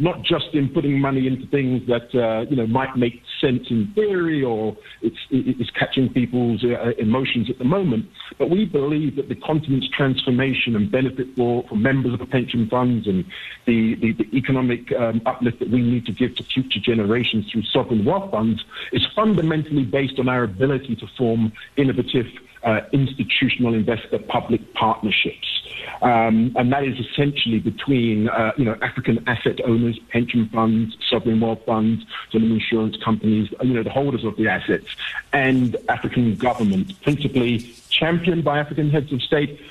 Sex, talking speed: male, 165 wpm